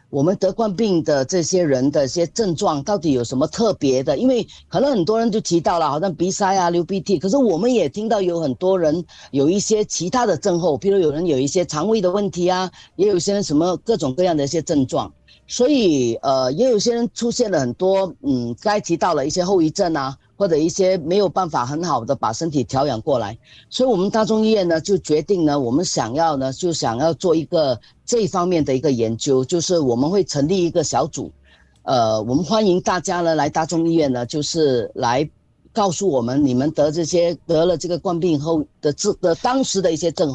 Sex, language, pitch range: female, Chinese, 145-200 Hz